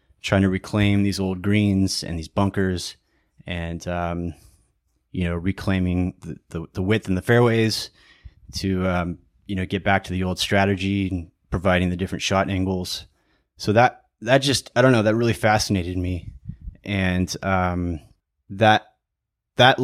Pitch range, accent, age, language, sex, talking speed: 90-100 Hz, American, 20-39, English, male, 155 wpm